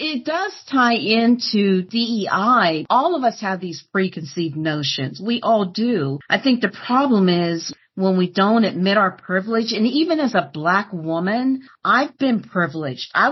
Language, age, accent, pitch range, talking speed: English, 50-69, American, 170-225 Hz, 160 wpm